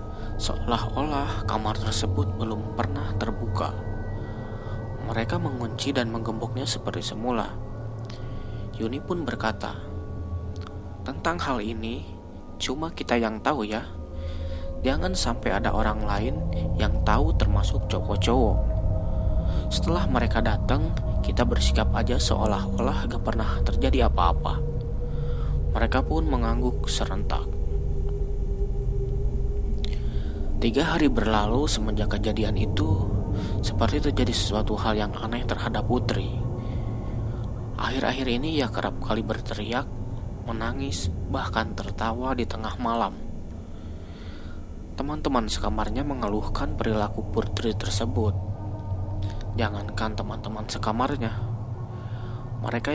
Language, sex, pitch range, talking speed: Indonesian, male, 90-115 Hz, 95 wpm